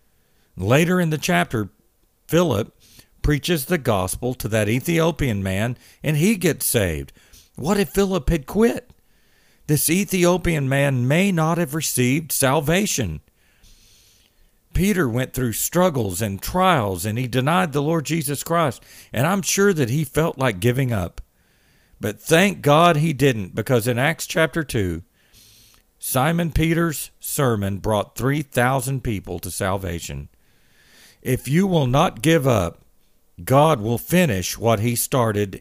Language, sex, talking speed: English, male, 135 wpm